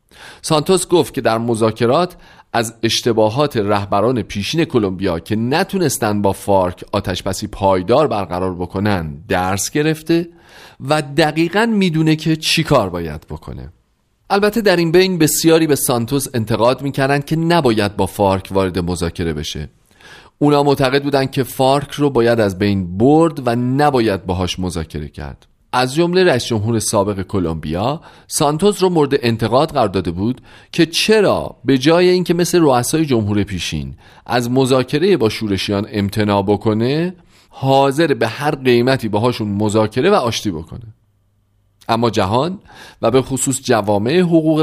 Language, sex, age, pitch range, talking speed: Persian, male, 40-59, 100-145 Hz, 135 wpm